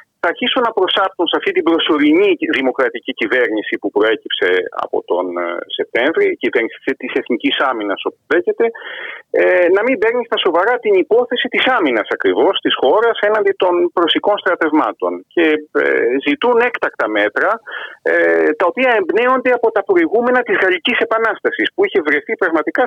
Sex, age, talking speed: male, 40-59, 140 wpm